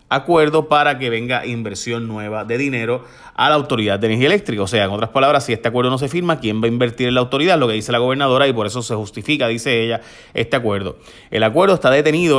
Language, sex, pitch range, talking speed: Spanish, male, 110-140 Hz, 240 wpm